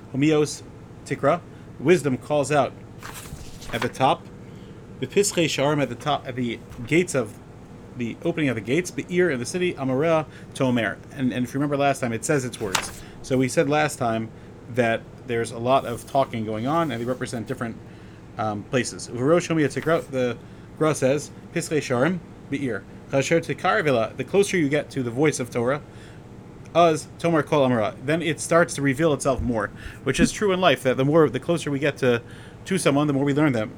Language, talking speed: English, 175 wpm